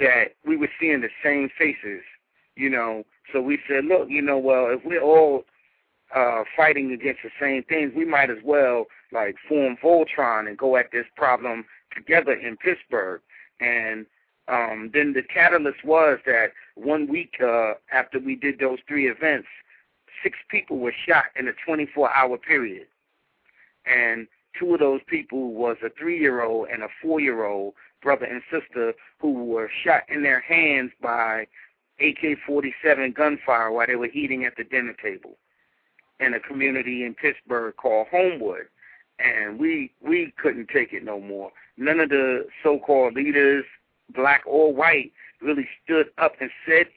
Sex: male